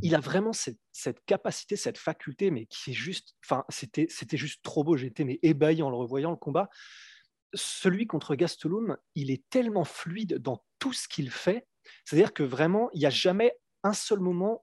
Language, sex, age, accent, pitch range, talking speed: French, male, 30-49, French, 145-190 Hz, 195 wpm